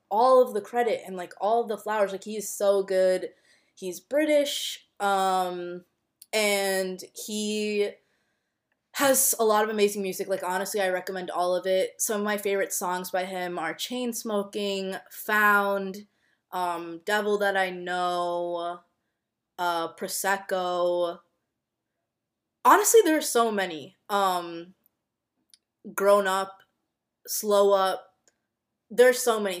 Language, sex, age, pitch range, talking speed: English, female, 20-39, 180-205 Hz, 125 wpm